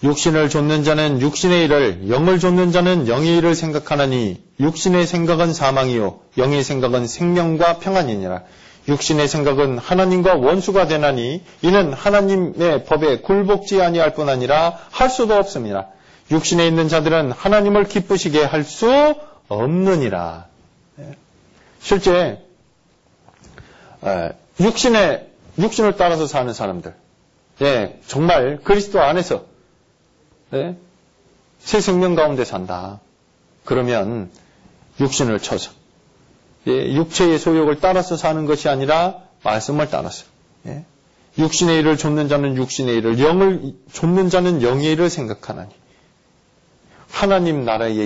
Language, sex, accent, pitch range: Korean, male, native, 130-180 Hz